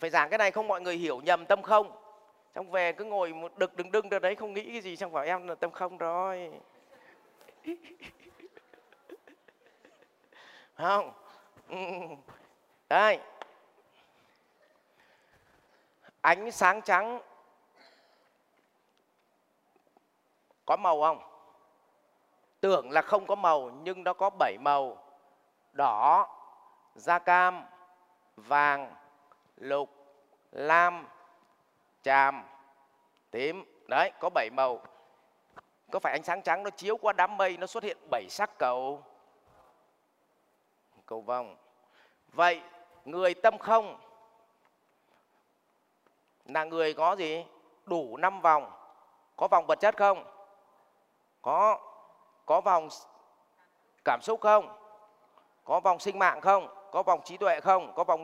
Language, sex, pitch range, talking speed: Vietnamese, male, 160-205 Hz, 115 wpm